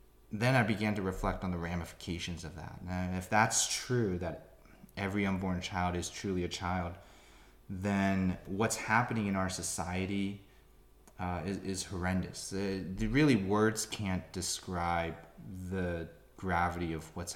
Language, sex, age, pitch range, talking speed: English, male, 20-39, 85-100 Hz, 140 wpm